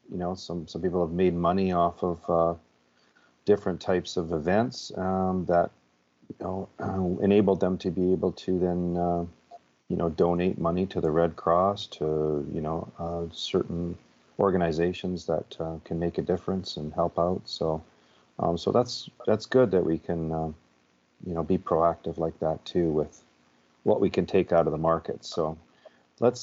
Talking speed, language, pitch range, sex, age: 180 wpm, English, 65-90 Hz, male, 40-59